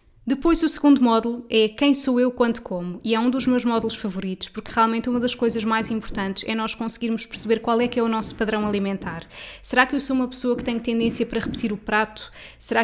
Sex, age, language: female, 20-39, Portuguese